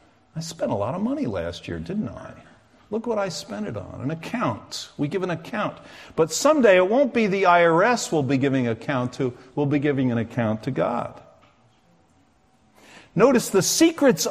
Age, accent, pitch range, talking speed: 50-69, American, 130-180 Hz, 190 wpm